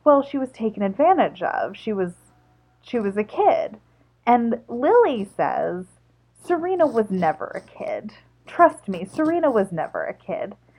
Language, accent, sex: English, American, female